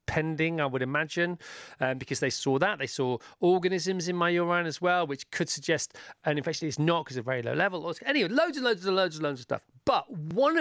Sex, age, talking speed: male, 40-59, 240 wpm